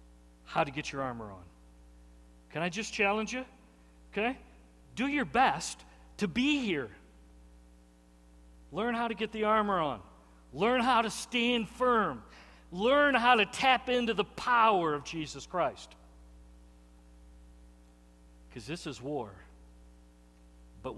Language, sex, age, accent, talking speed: English, male, 50-69, American, 130 wpm